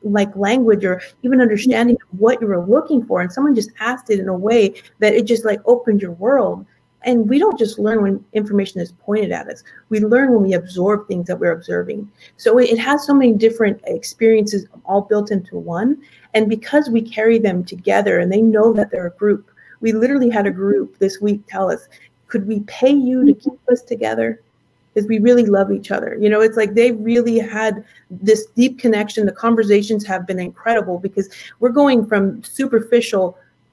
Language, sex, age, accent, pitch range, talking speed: English, female, 30-49, American, 195-235 Hz, 200 wpm